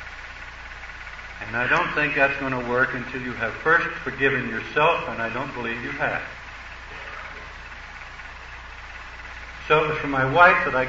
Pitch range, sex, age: 120-145 Hz, male, 60-79